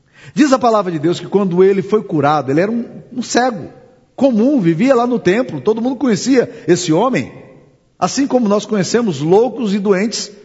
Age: 50-69